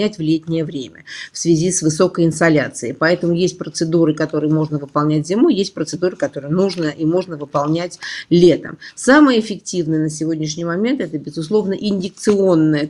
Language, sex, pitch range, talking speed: Russian, female, 155-185 Hz, 145 wpm